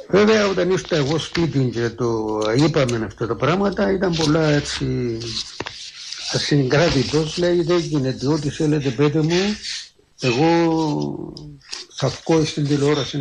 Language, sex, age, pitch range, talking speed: Greek, male, 60-79, 130-160 Hz, 125 wpm